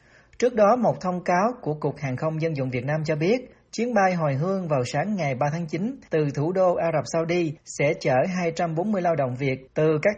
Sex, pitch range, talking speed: male, 145-185 Hz, 230 wpm